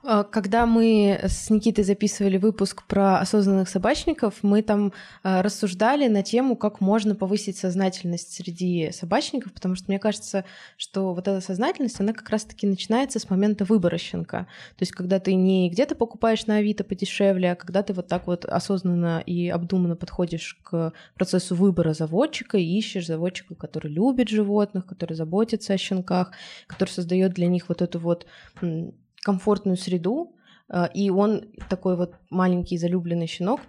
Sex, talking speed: female, 155 wpm